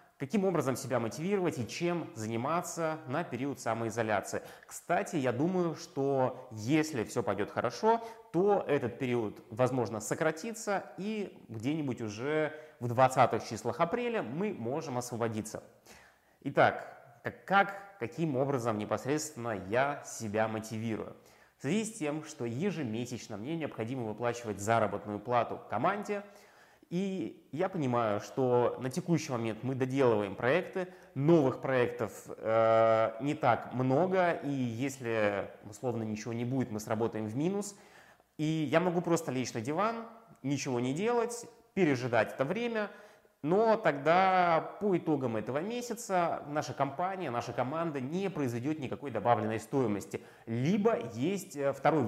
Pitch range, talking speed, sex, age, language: 120-175 Hz, 125 wpm, male, 20-39, Russian